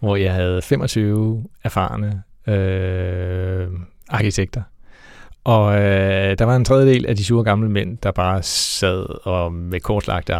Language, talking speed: Danish, 140 wpm